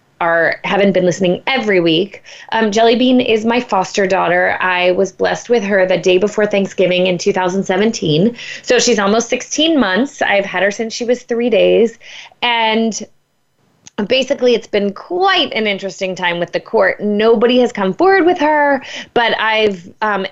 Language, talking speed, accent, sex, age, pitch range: English, 165 wpm, American, female, 20-39, 185-245 Hz